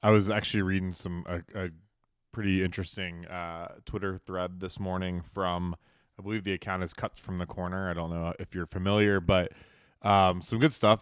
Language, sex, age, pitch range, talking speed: English, male, 20-39, 90-105 Hz, 190 wpm